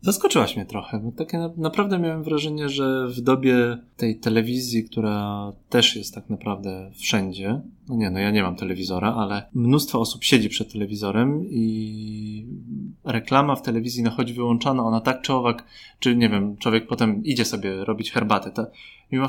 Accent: native